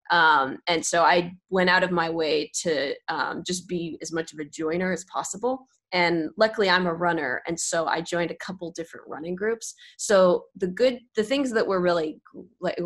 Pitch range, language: 165-200 Hz, English